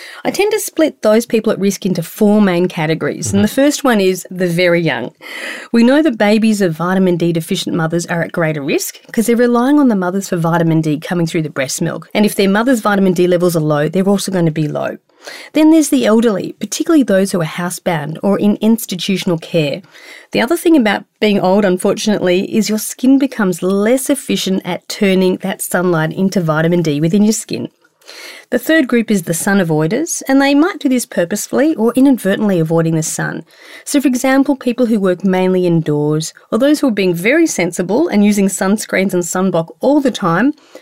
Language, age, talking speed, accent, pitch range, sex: English, 40-59, 205 wpm, Australian, 175-245 Hz, female